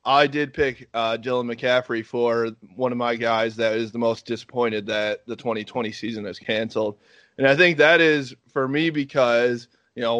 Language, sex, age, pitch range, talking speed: English, male, 20-39, 120-145 Hz, 190 wpm